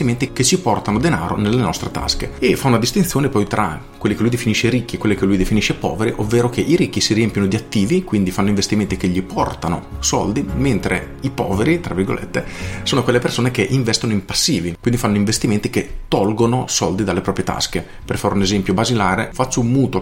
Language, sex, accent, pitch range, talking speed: Italian, male, native, 100-125 Hz, 205 wpm